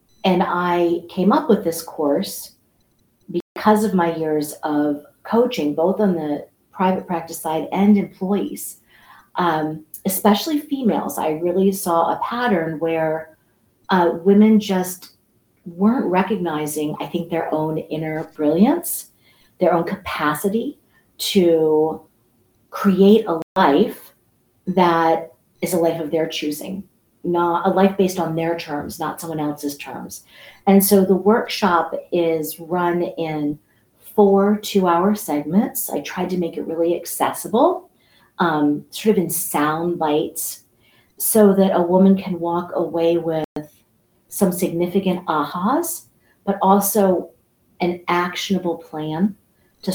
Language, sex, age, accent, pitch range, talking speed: English, female, 40-59, American, 155-195 Hz, 125 wpm